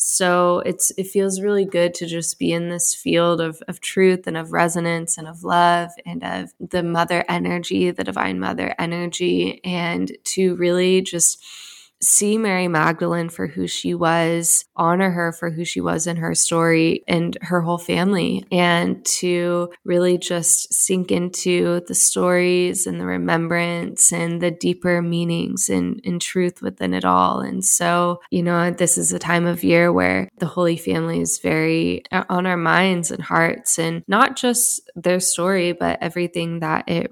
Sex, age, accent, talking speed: female, 20-39, American, 170 wpm